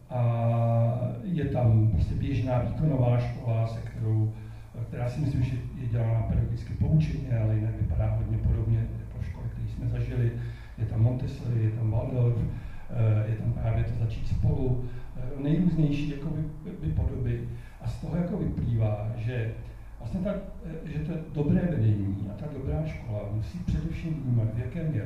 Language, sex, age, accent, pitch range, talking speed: Czech, male, 60-79, native, 110-135 Hz, 160 wpm